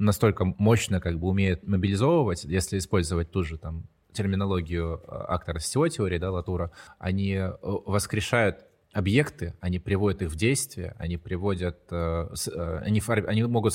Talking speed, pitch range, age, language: 135 wpm, 90-110 Hz, 20-39, Russian